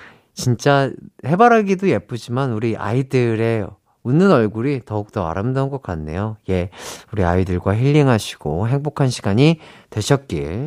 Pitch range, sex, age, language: 100-150 Hz, male, 40-59, Korean